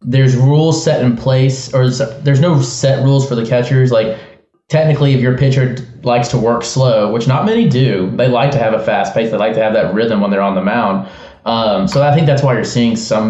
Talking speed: 240 wpm